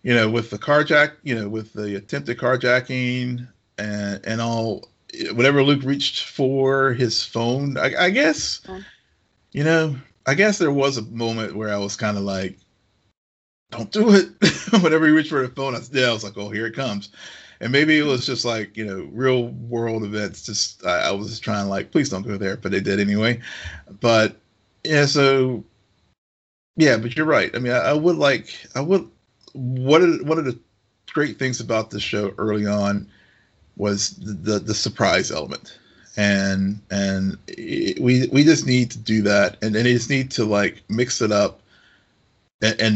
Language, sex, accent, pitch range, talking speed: English, male, American, 100-130 Hz, 180 wpm